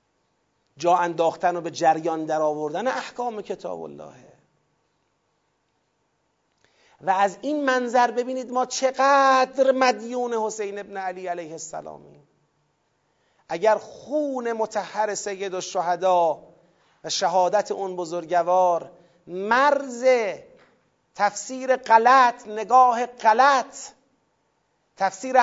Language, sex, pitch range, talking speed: Persian, male, 175-225 Hz, 90 wpm